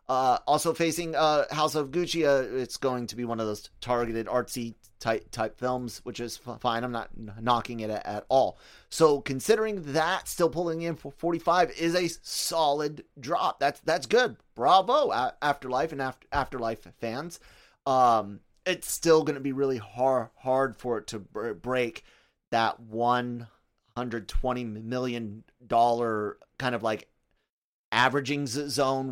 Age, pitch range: 30-49, 115-135 Hz